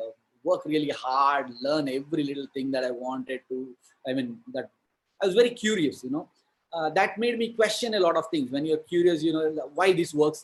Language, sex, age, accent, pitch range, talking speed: English, male, 20-39, Indian, 135-180 Hz, 215 wpm